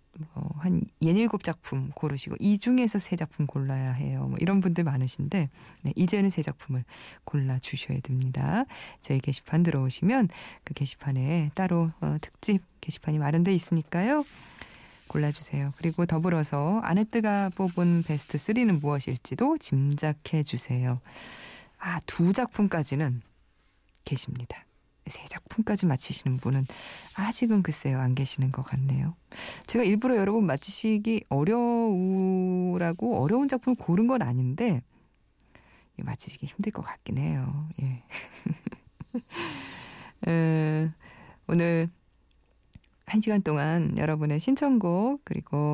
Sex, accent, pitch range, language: female, native, 140-200 Hz, Korean